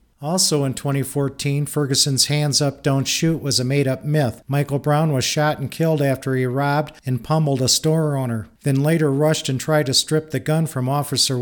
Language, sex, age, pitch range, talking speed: English, male, 50-69, 135-155 Hz, 195 wpm